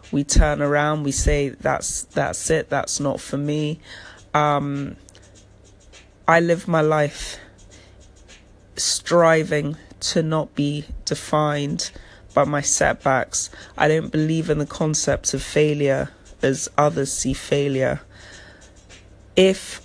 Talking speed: 115 wpm